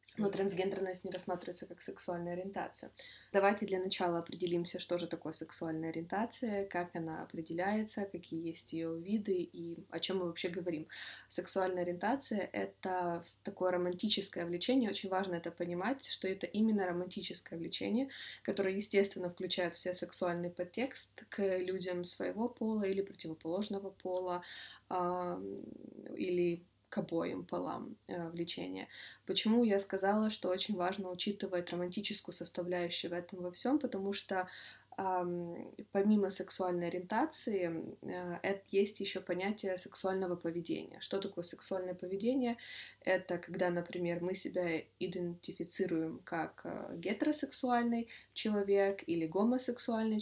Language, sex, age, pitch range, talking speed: Russian, female, 20-39, 175-195 Hz, 120 wpm